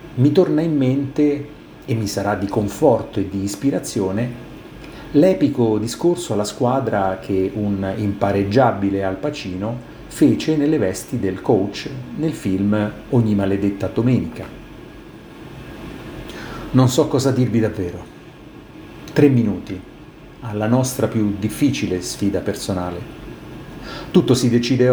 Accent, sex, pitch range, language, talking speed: native, male, 100-140 Hz, Italian, 110 wpm